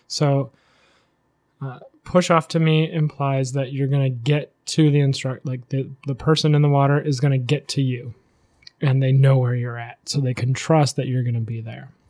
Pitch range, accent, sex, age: 135-155 Hz, American, male, 20-39